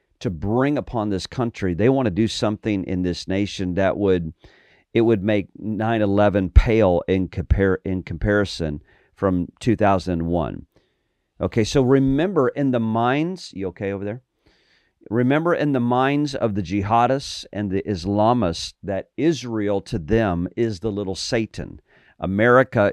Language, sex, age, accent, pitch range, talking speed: English, male, 50-69, American, 95-125 Hz, 145 wpm